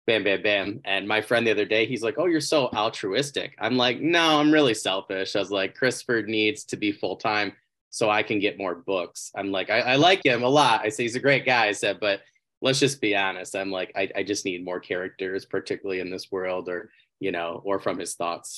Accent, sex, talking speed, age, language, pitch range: American, male, 240 wpm, 20-39, English, 95-125 Hz